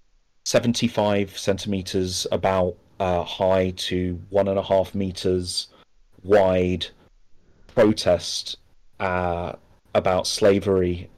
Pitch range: 90-100 Hz